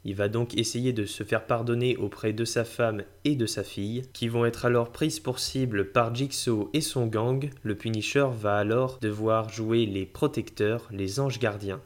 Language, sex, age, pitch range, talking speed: French, male, 20-39, 110-135 Hz, 195 wpm